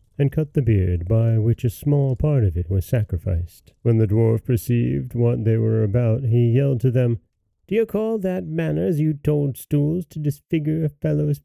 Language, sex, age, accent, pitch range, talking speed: English, male, 30-49, American, 115-150 Hz, 195 wpm